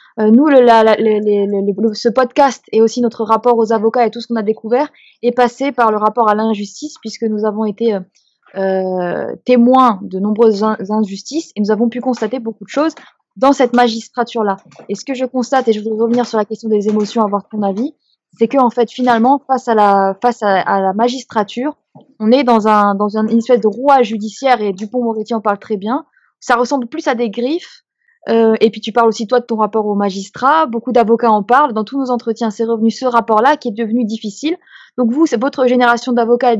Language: French